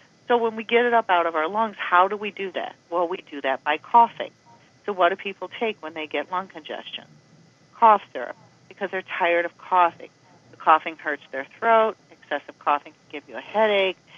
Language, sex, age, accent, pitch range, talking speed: English, female, 50-69, American, 155-210 Hz, 210 wpm